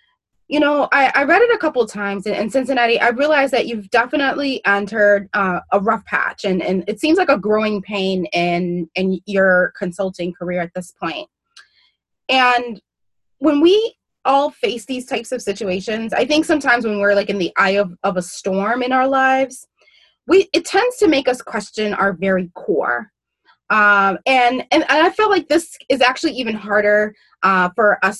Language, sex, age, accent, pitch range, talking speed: English, female, 20-39, American, 200-265 Hz, 185 wpm